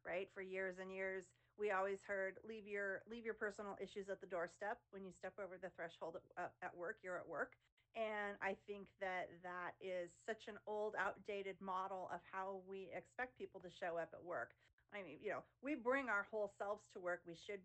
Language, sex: English, female